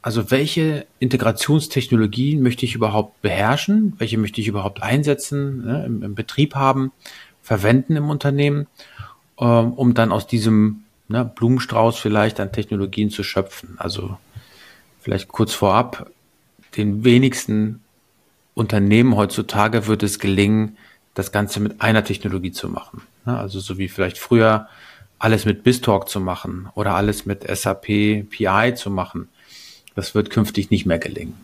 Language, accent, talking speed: English, German, 140 wpm